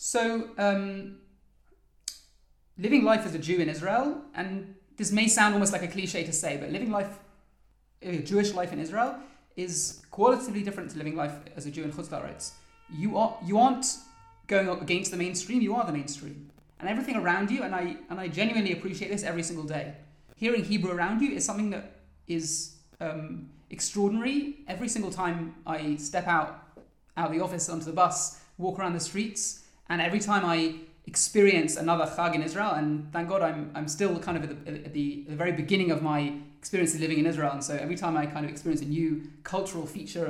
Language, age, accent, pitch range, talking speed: English, 30-49, British, 155-200 Hz, 200 wpm